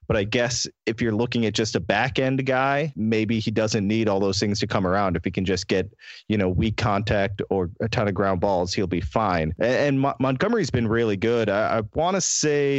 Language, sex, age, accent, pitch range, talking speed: English, male, 30-49, American, 105-125 Hz, 230 wpm